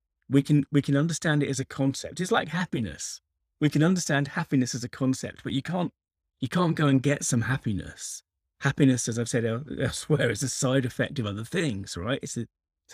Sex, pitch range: male, 95-135 Hz